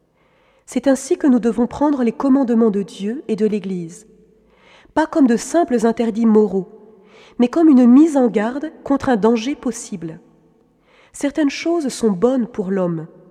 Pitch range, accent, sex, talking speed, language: 215-270 Hz, French, female, 160 wpm, French